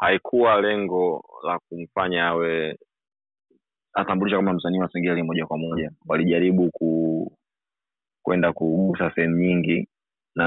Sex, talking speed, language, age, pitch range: male, 115 wpm, Swahili, 20-39, 85-95 Hz